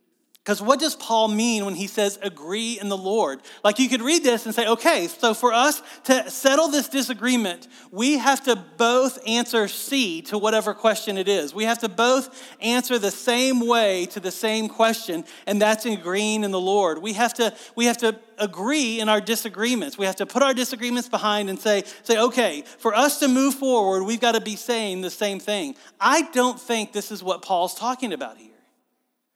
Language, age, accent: English, 40-59, American